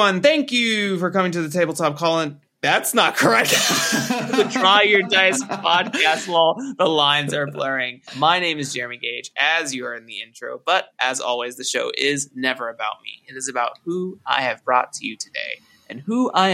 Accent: American